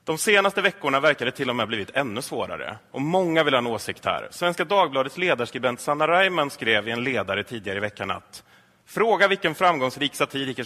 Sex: male